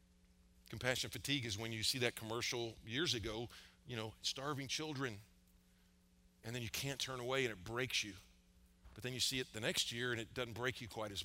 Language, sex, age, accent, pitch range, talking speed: English, male, 50-69, American, 90-115 Hz, 210 wpm